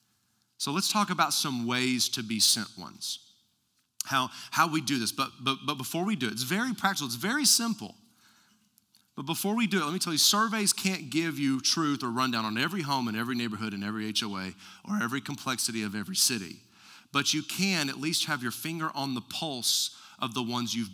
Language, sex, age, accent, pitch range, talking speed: English, male, 40-59, American, 110-145 Hz, 210 wpm